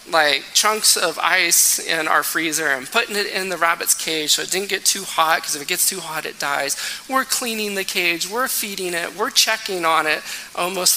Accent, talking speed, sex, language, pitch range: American, 220 wpm, male, English, 160-210 Hz